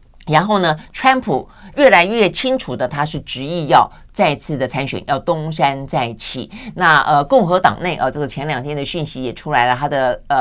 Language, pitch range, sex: Chinese, 135-175 Hz, female